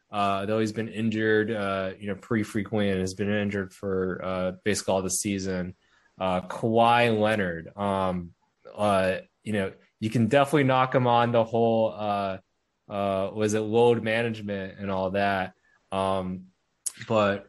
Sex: male